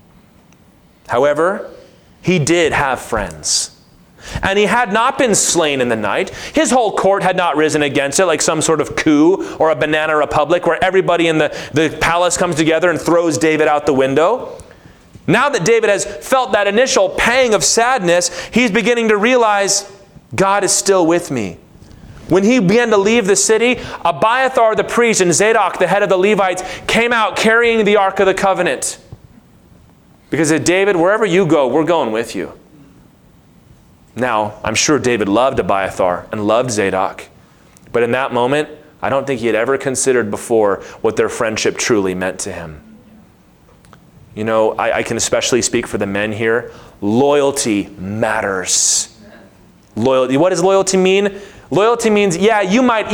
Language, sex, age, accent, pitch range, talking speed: English, male, 30-49, American, 145-210 Hz, 170 wpm